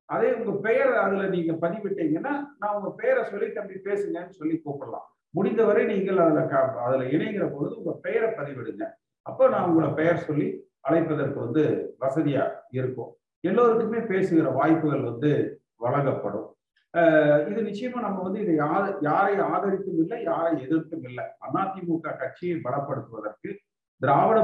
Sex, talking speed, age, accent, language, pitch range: male, 135 wpm, 50-69, native, Tamil, 165-240 Hz